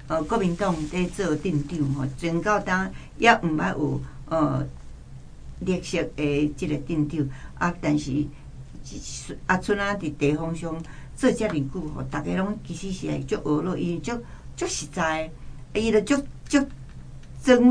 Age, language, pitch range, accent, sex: 60-79, Chinese, 150-205 Hz, American, female